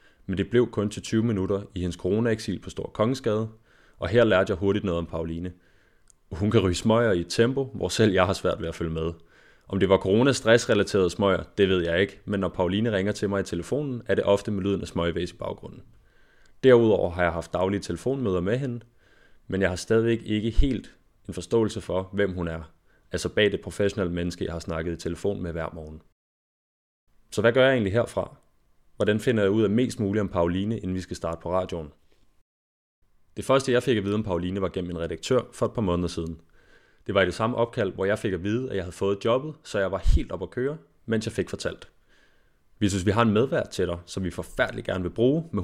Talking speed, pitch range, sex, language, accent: 230 wpm, 85-110 Hz, male, Danish, native